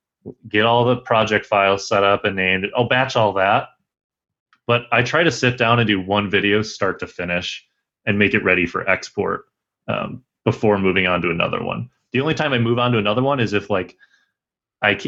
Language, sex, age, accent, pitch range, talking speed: English, male, 30-49, American, 100-115 Hz, 205 wpm